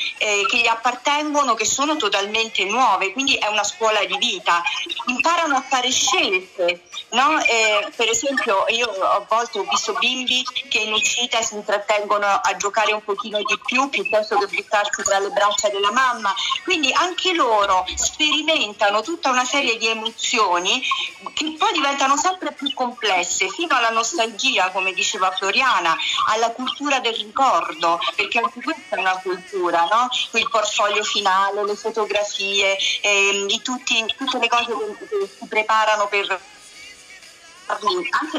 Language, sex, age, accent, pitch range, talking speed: Italian, female, 50-69, native, 205-280 Hz, 150 wpm